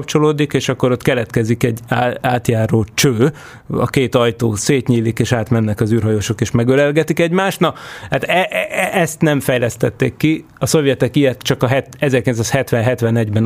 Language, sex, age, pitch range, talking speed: Hungarian, male, 30-49, 120-145 Hz, 155 wpm